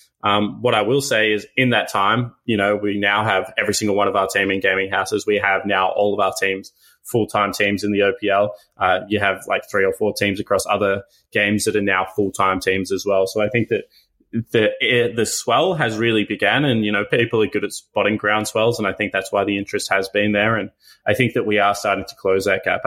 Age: 20-39